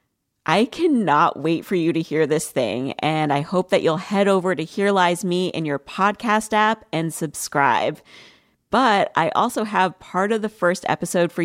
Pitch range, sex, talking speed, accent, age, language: 155-210 Hz, female, 190 wpm, American, 30-49, English